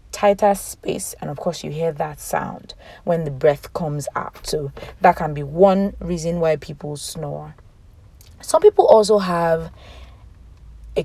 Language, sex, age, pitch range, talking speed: English, female, 20-39, 145-180 Hz, 150 wpm